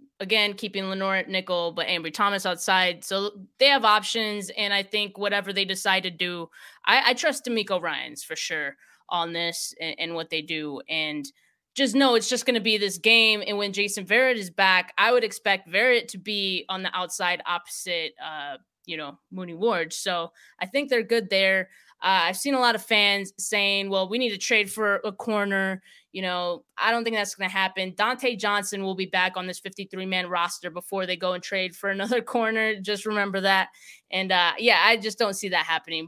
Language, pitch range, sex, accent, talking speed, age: English, 185-220 Hz, female, American, 210 wpm, 20-39